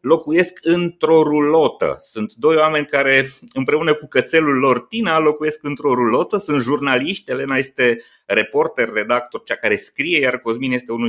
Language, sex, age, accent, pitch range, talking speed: Romanian, male, 30-49, native, 115-150 Hz, 150 wpm